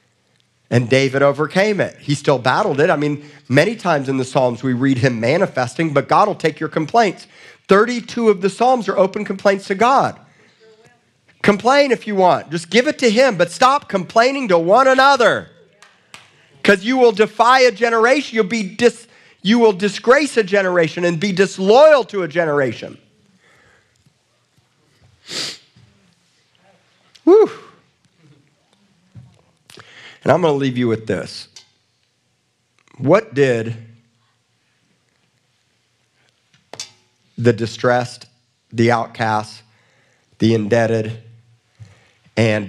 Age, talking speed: 40-59, 120 wpm